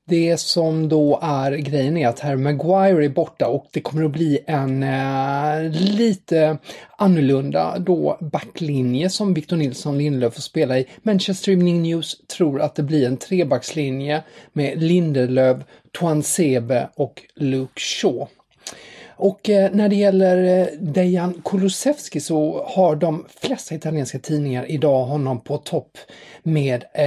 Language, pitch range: English, 135-175 Hz